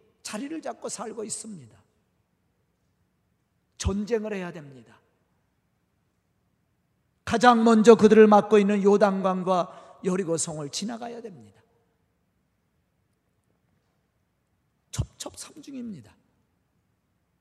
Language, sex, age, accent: Korean, male, 40-59, native